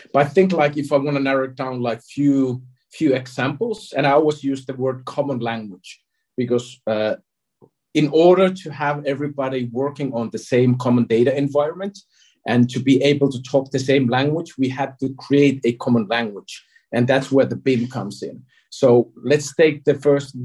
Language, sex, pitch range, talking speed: English, male, 125-145 Hz, 190 wpm